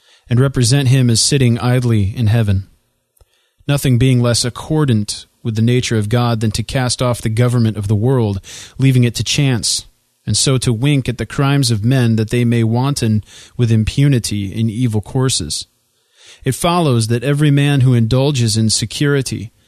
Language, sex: English, male